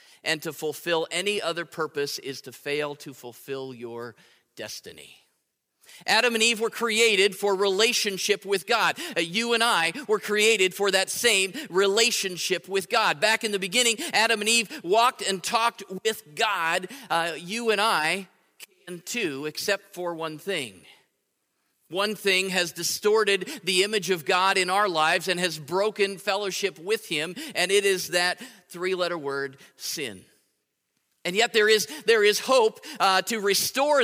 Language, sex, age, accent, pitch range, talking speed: English, male, 40-59, American, 180-215 Hz, 155 wpm